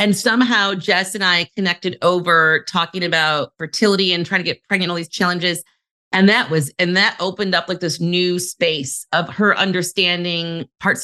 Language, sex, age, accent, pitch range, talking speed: English, female, 40-59, American, 175-210 Hz, 180 wpm